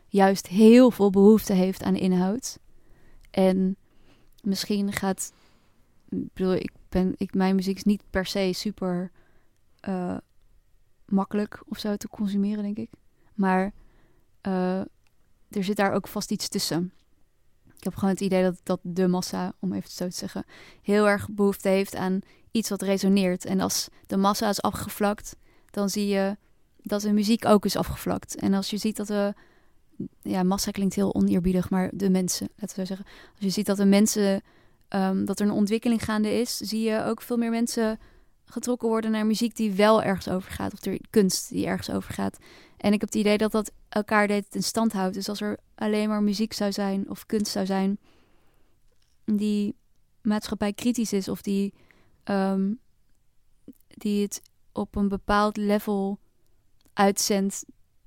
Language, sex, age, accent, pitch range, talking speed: Dutch, female, 20-39, Dutch, 190-210 Hz, 170 wpm